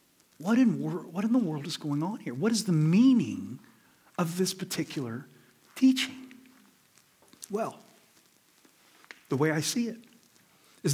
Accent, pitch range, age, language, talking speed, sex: American, 165-250 Hz, 40-59, English, 145 wpm, male